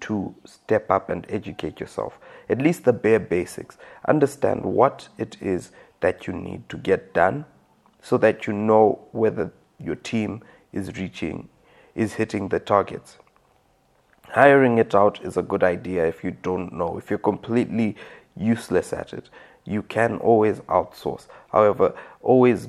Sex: male